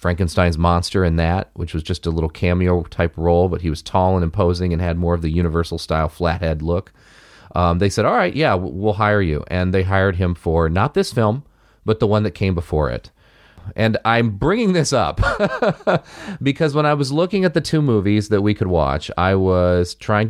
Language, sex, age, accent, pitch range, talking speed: English, male, 30-49, American, 85-110 Hz, 205 wpm